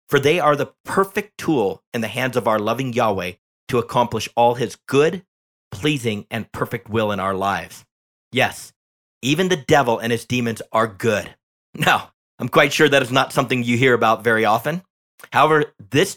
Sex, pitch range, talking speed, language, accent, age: male, 115-170 Hz, 180 wpm, English, American, 40-59